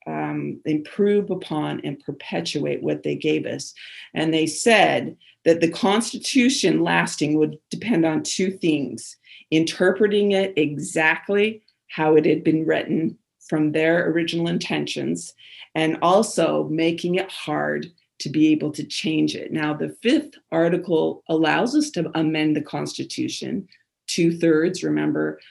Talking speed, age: 130 wpm, 40-59